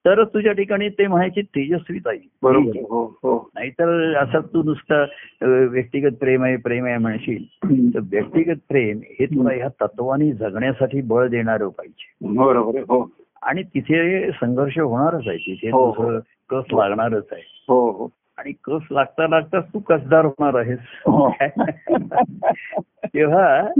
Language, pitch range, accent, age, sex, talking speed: Marathi, 135-195 Hz, native, 60-79, male, 100 wpm